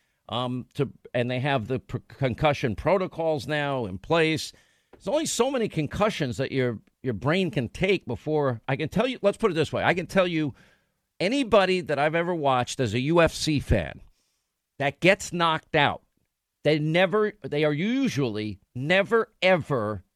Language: English